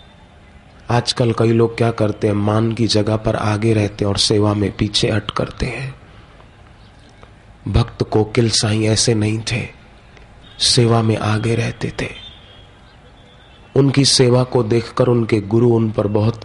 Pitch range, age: 105-115 Hz, 30-49